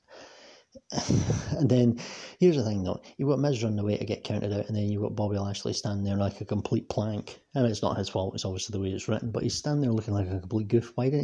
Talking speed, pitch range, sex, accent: 270 wpm, 100-120 Hz, male, British